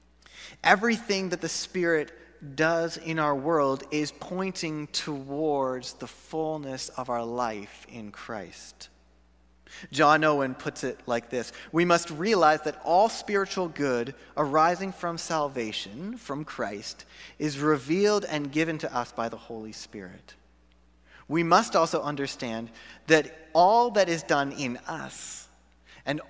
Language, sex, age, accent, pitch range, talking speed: English, male, 30-49, American, 105-160 Hz, 130 wpm